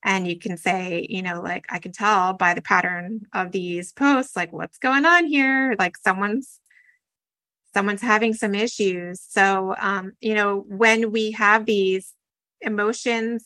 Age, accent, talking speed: 30-49, American, 160 wpm